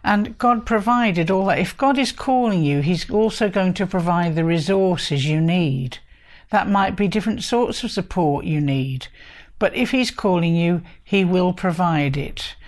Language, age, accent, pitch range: English, 60-79, British, 170-220 Hz